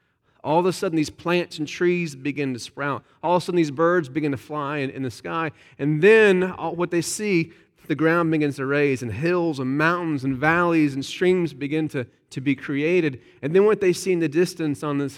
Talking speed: 225 wpm